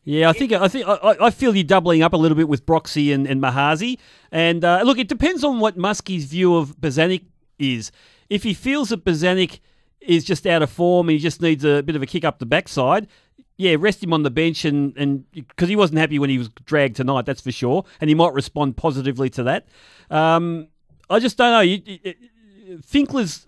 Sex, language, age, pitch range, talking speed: male, English, 40-59, 140-180 Hz, 215 wpm